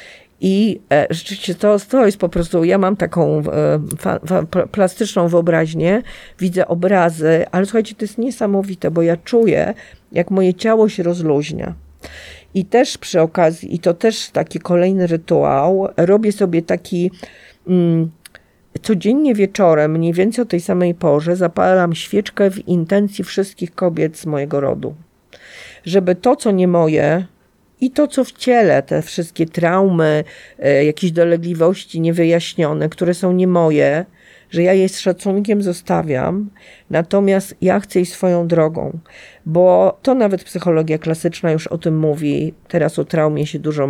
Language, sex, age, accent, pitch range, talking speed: Polish, female, 50-69, native, 165-200 Hz, 140 wpm